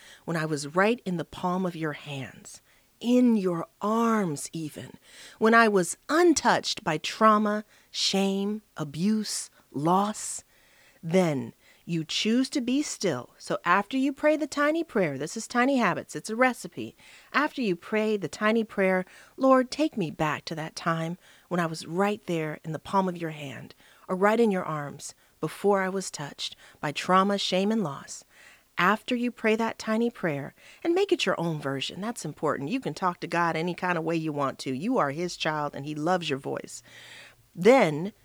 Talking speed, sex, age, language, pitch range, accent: 185 wpm, female, 40-59, English, 160-225 Hz, American